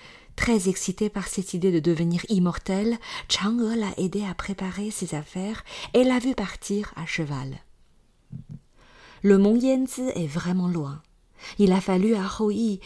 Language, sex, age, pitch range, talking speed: French, female, 40-59, 170-220 Hz, 150 wpm